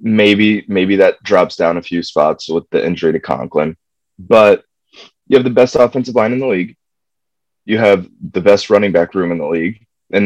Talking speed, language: 200 wpm, English